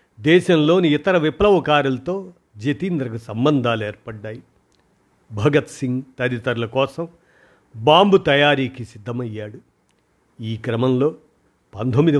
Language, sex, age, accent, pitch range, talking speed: Telugu, male, 50-69, native, 115-150 Hz, 80 wpm